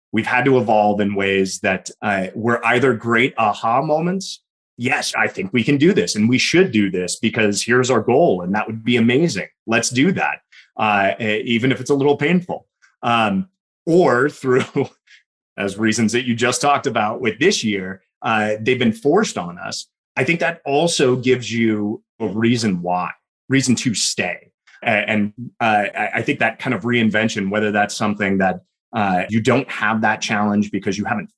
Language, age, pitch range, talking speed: English, 30-49, 105-135 Hz, 185 wpm